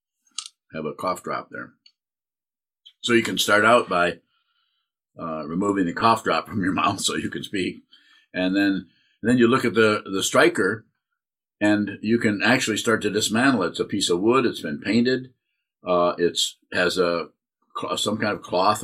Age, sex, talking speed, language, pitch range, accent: 50-69, male, 180 wpm, English, 95-130 Hz, American